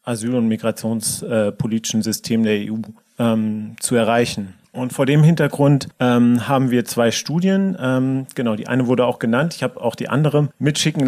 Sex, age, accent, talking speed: male, 40-59, German, 175 wpm